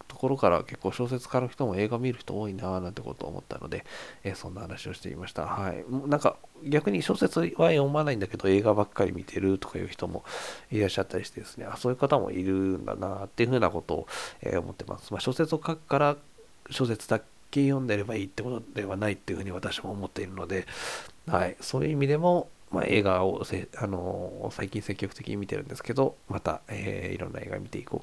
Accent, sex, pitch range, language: native, male, 95-125 Hz, Japanese